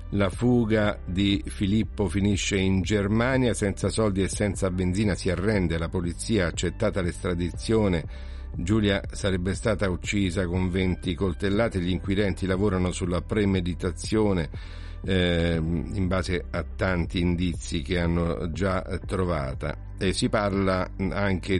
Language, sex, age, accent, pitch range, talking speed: Italian, male, 50-69, native, 85-105 Hz, 125 wpm